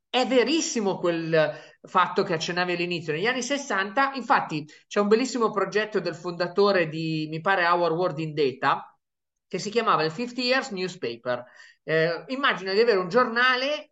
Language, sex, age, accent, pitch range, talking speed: Italian, male, 30-49, native, 175-240 Hz, 160 wpm